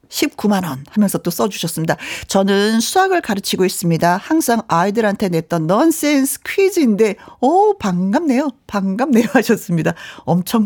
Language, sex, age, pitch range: Korean, female, 50-69, 195-280 Hz